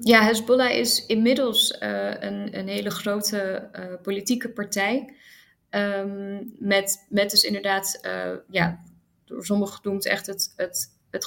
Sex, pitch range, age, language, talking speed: female, 180-200 Hz, 20-39, Dutch, 140 wpm